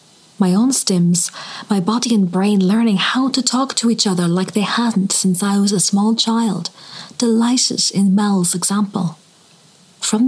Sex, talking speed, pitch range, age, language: female, 165 wpm, 180-225 Hz, 20-39, English